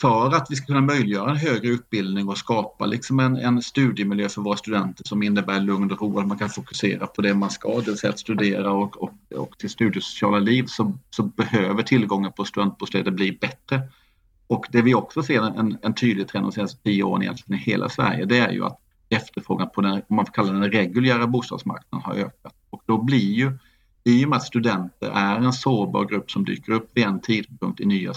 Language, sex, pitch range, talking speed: Swedish, male, 100-120 Hz, 220 wpm